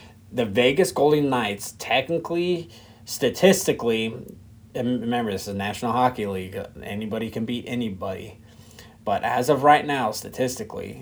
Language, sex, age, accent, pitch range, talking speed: English, male, 30-49, American, 105-125 Hz, 125 wpm